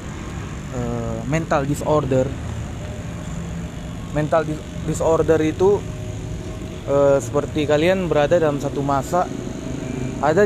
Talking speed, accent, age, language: 75 wpm, native, 20-39, Indonesian